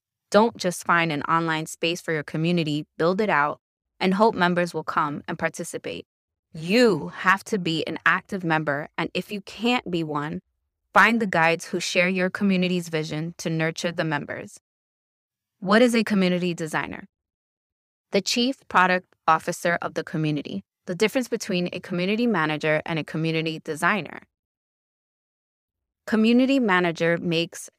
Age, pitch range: 20-39, 160-200 Hz